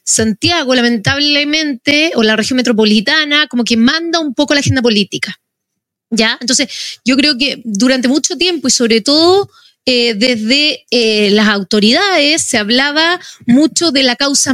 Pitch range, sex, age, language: 235-320 Hz, female, 30-49, Spanish